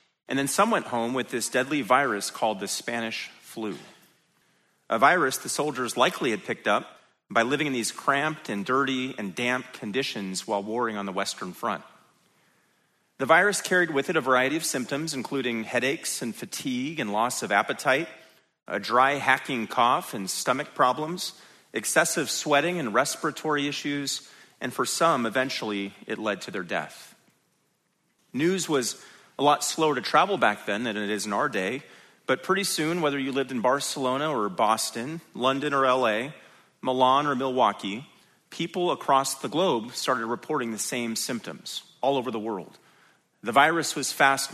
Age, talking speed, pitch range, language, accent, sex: 30-49, 165 wpm, 120-150 Hz, English, American, male